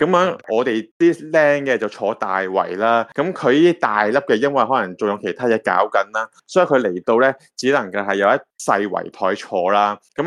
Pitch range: 105-160 Hz